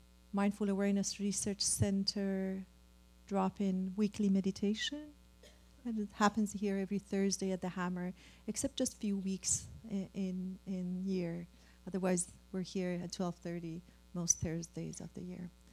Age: 40-59